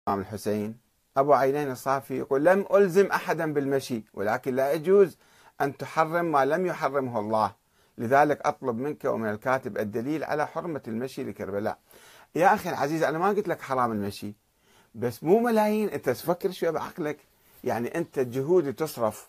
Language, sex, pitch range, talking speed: Arabic, male, 120-185 Hz, 150 wpm